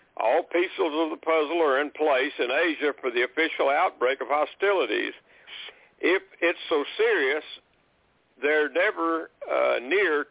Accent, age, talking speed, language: American, 60-79, 140 wpm, English